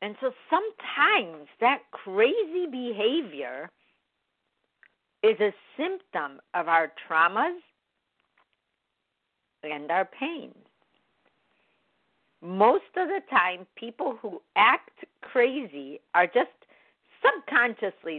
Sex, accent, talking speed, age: female, American, 85 wpm, 50-69